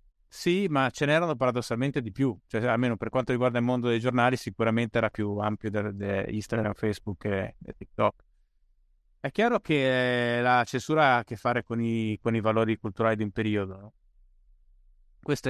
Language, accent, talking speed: Italian, native, 180 wpm